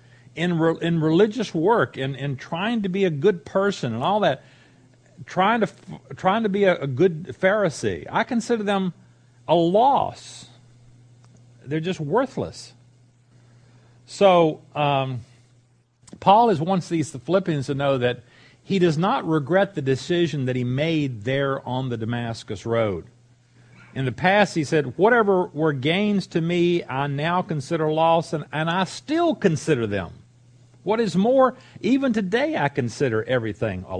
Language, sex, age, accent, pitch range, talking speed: English, male, 50-69, American, 120-170 Hz, 155 wpm